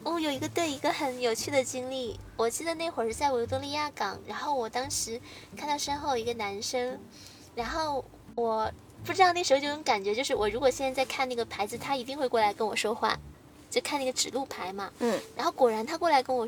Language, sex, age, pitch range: Chinese, female, 10-29, 230-285 Hz